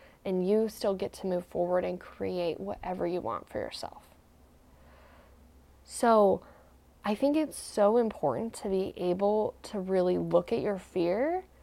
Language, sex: English, female